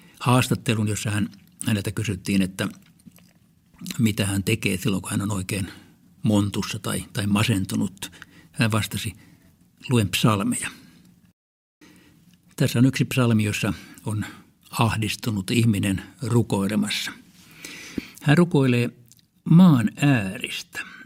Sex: male